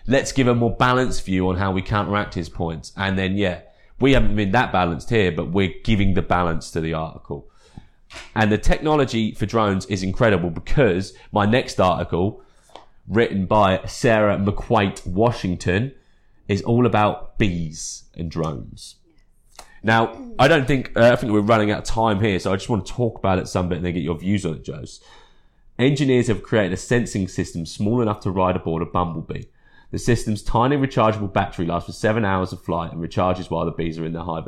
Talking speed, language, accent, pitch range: 200 wpm, English, British, 90-115 Hz